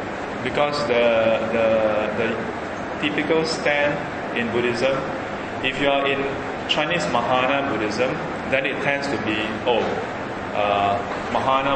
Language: English